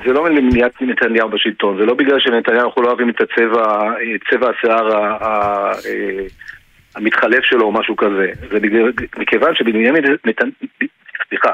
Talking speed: 155 wpm